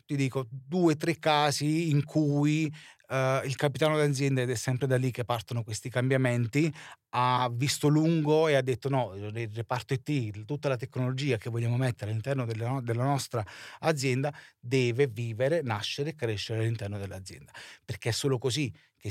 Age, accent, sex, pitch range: 30-49, native, male, 120-150 Hz